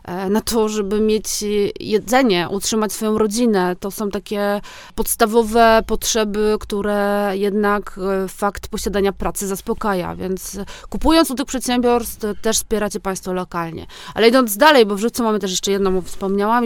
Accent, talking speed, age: native, 145 wpm, 20-39